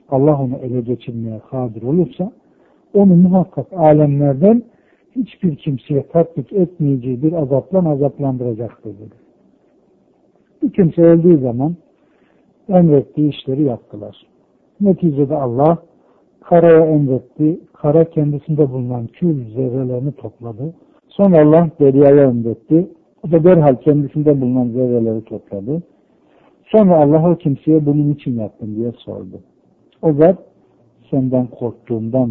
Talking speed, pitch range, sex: 105 wpm, 115-155 Hz, male